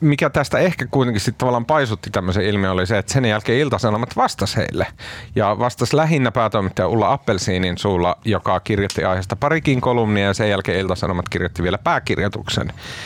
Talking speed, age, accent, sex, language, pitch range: 165 wpm, 40-59, native, male, Finnish, 100-130 Hz